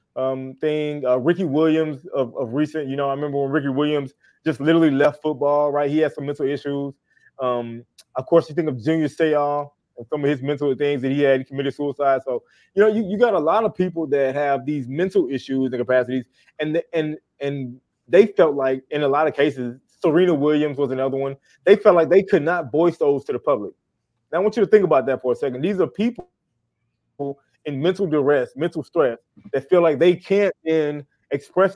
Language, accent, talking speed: English, American, 220 wpm